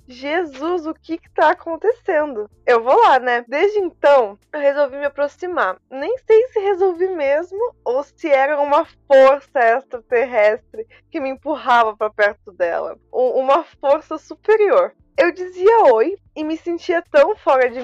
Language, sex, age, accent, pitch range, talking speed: Portuguese, female, 20-39, Brazilian, 245-340 Hz, 155 wpm